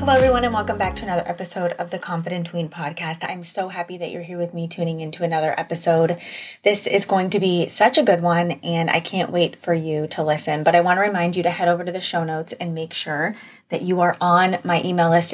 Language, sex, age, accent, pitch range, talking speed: English, female, 20-39, American, 165-195 Hz, 255 wpm